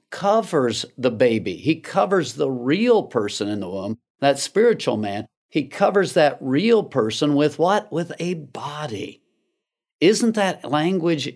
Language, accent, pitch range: English, American, 135-180 Hz